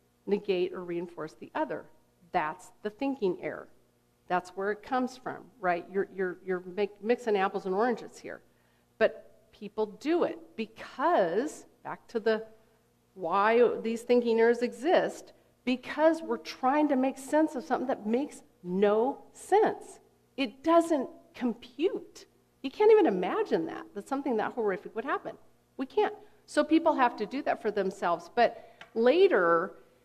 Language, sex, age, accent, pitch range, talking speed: English, female, 50-69, American, 195-280 Hz, 150 wpm